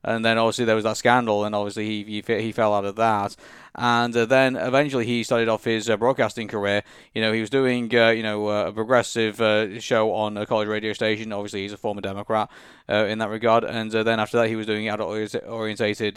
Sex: male